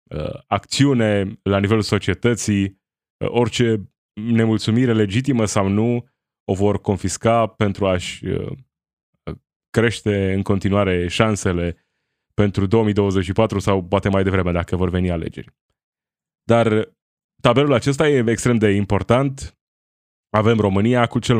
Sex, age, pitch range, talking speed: male, 20-39, 95-120 Hz, 110 wpm